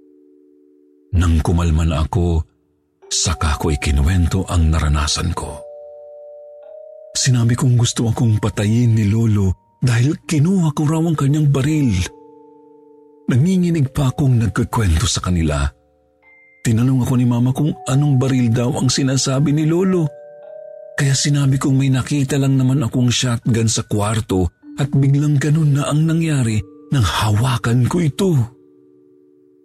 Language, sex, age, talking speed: Filipino, male, 50-69, 125 wpm